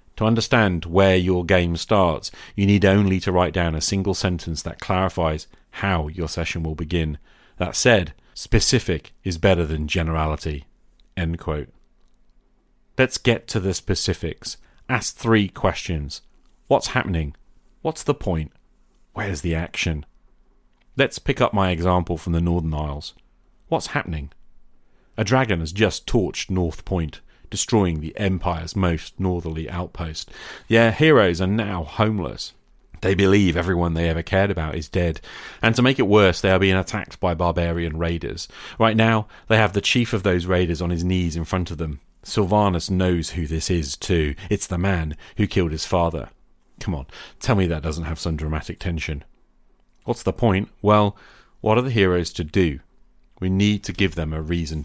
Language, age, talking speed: English, 40-59, 165 wpm